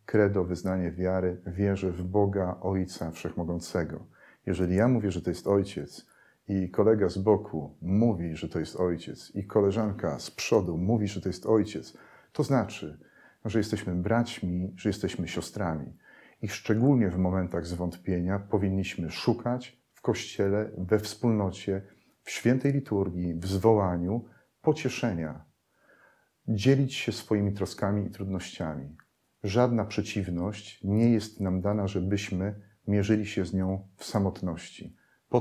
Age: 40-59